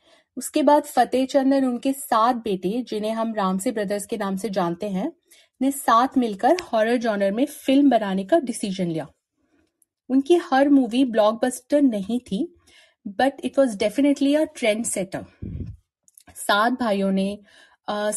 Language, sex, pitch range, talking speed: Hindi, female, 210-275 Hz, 150 wpm